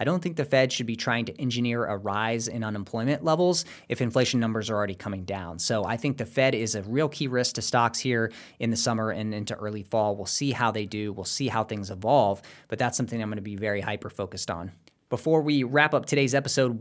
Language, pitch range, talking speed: English, 105-130 Hz, 245 wpm